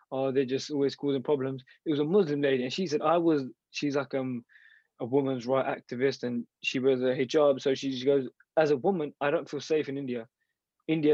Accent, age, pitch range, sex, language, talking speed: British, 20-39, 130-150 Hz, male, English, 220 wpm